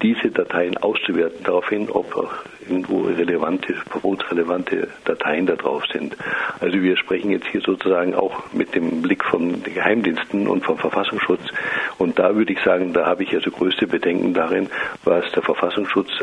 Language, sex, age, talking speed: German, male, 50-69, 155 wpm